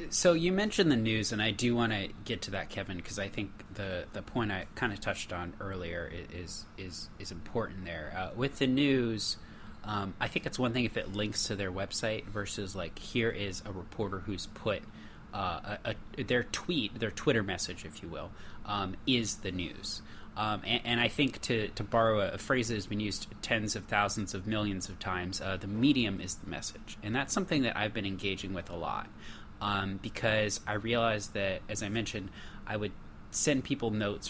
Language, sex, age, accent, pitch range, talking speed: English, male, 30-49, American, 95-115 Hz, 210 wpm